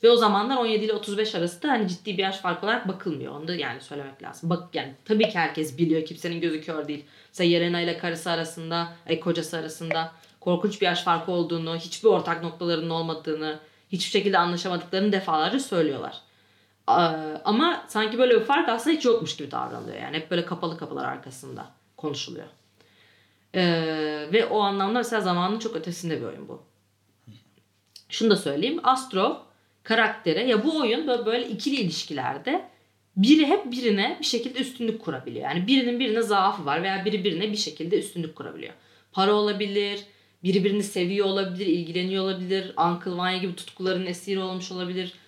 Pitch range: 165-225 Hz